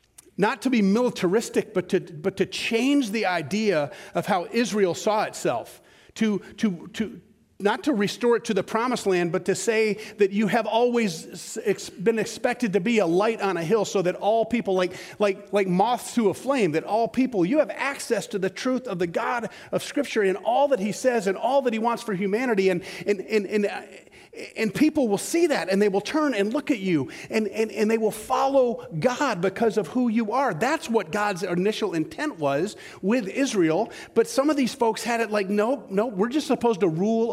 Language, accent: English, American